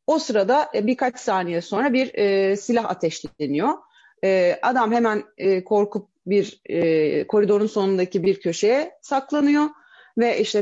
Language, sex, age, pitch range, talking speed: Turkish, female, 40-59, 195-280 Hz, 105 wpm